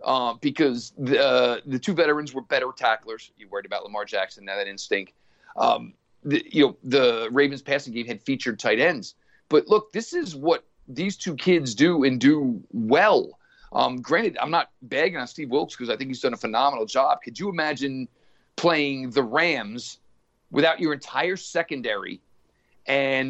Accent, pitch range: American, 125-160 Hz